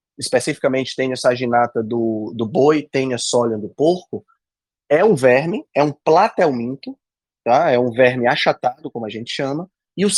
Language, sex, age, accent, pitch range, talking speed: Portuguese, male, 20-39, Brazilian, 125-175 Hz, 160 wpm